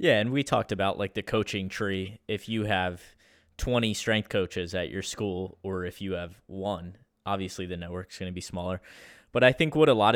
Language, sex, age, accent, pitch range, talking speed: English, male, 20-39, American, 95-110 Hz, 215 wpm